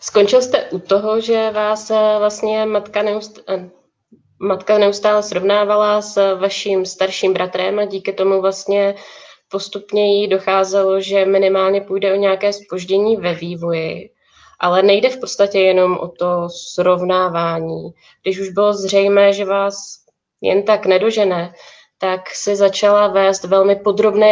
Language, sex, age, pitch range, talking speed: Czech, female, 20-39, 185-200 Hz, 135 wpm